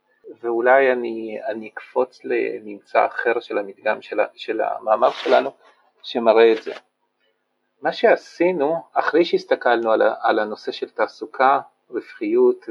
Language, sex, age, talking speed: Hebrew, male, 50-69, 120 wpm